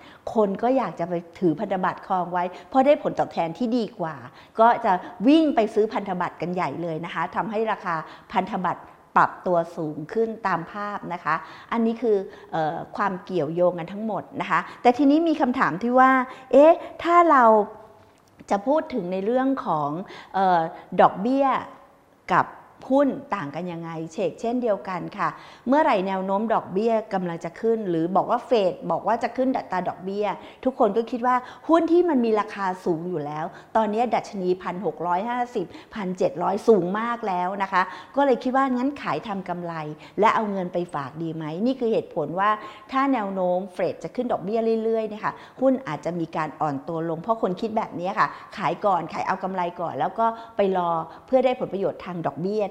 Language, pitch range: English, 175-235 Hz